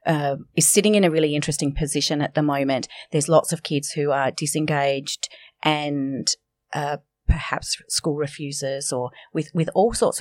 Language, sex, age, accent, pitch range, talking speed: English, female, 30-49, Australian, 150-205 Hz, 165 wpm